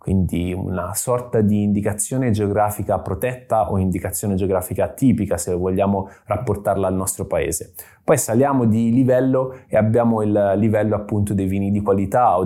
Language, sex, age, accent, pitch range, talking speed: Italian, male, 20-39, native, 95-115 Hz, 150 wpm